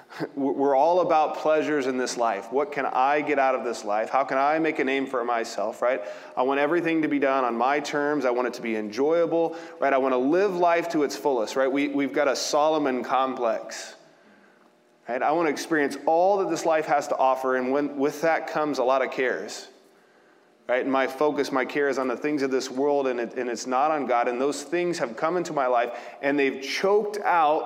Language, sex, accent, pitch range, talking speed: English, male, American, 125-150 Hz, 230 wpm